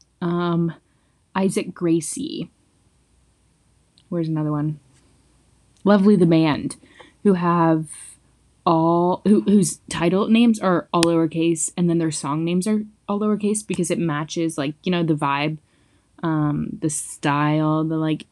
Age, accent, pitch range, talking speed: 20-39, American, 160-215 Hz, 130 wpm